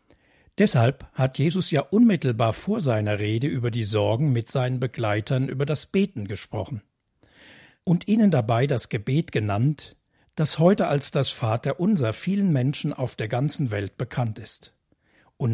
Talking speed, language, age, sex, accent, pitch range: 150 wpm, German, 60-79, male, German, 115-155 Hz